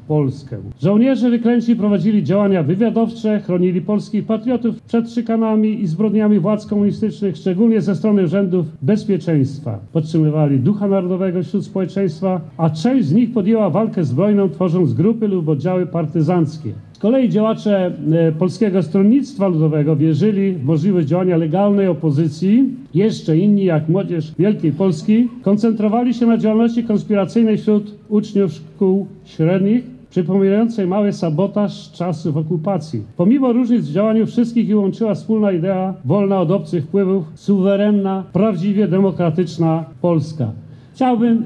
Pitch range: 165-215 Hz